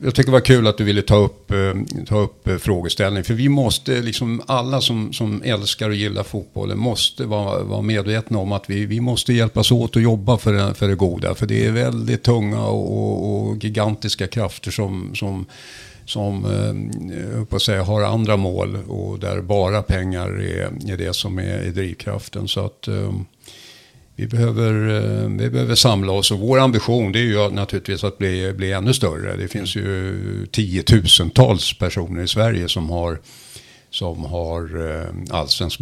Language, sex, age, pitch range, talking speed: Swedish, male, 60-79, 95-115 Hz, 170 wpm